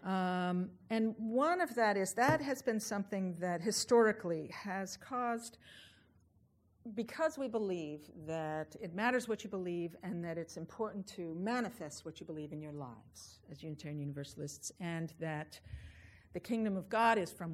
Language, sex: English, female